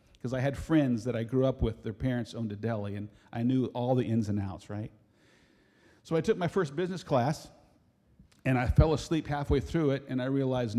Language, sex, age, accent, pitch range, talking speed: English, male, 40-59, American, 115-155 Hz, 220 wpm